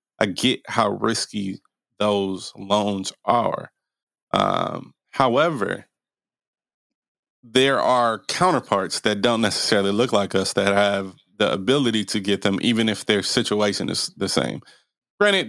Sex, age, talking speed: male, 20-39, 130 wpm